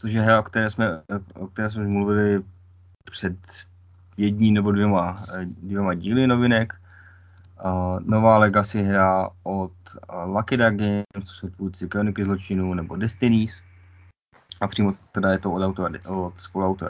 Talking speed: 135 wpm